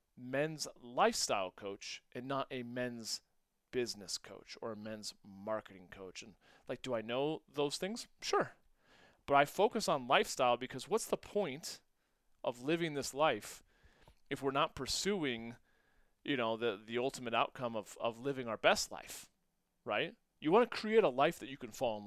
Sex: male